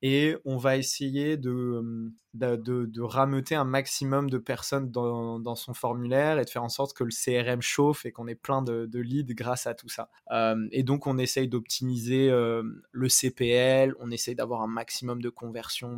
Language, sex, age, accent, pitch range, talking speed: French, male, 20-39, French, 125-150 Hz, 200 wpm